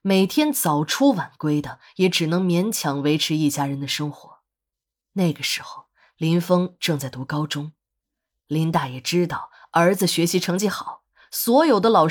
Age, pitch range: 20-39, 150-200 Hz